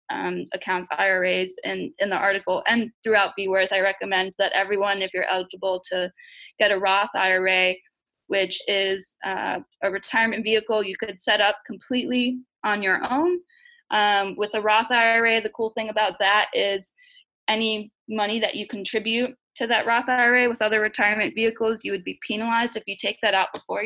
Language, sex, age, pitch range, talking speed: English, female, 20-39, 195-235 Hz, 180 wpm